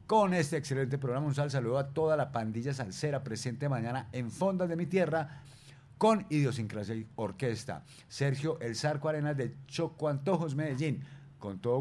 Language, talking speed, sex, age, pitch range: Spanish, 165 wpm, male, 50-69, 120-160 Hz